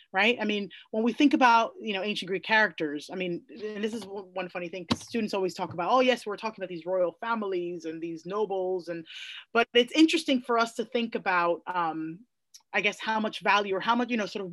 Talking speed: 235 wpm